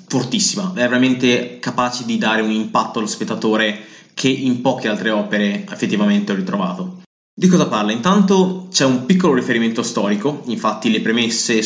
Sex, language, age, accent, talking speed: male, Italian, 20-39, native, 155 wpm